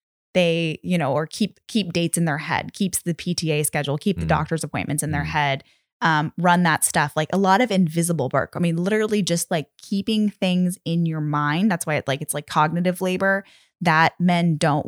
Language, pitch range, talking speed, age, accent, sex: English, 155-185 Hz, 210 wpm, 10-29, American, female